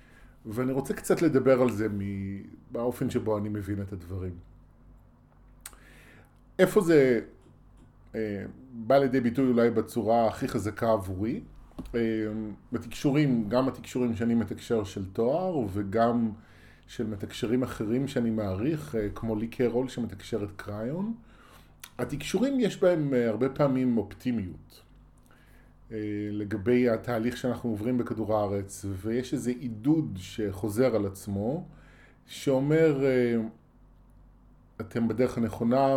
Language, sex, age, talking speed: Hebrew, male, 20-39, 105 wpm